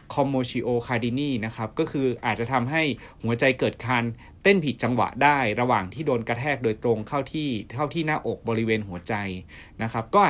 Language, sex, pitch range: Thai, male, 105-135 Hz